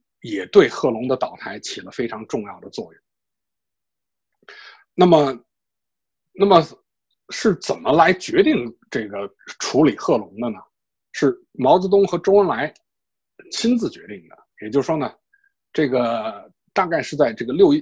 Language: Chinese